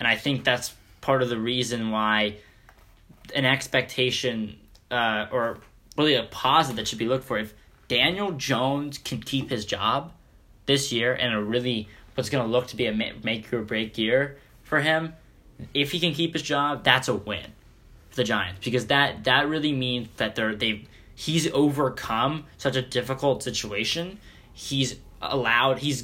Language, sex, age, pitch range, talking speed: English, male, 10-29, 110-135 Hz, 170 wpm